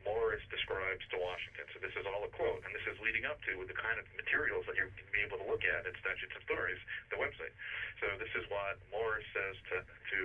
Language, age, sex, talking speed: English, 40-59, male, 245 wpm